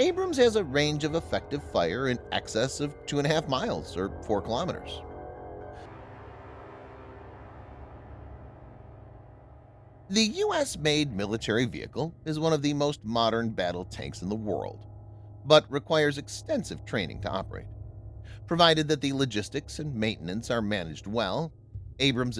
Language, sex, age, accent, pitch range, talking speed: English, male, 30-49, American, 105-150 Hz, 125 wpm